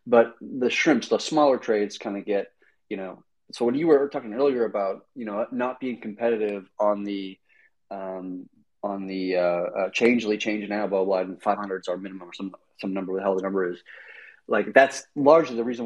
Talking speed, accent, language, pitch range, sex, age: 200 wpm, American, English, 95-120 Hz, male, 30-49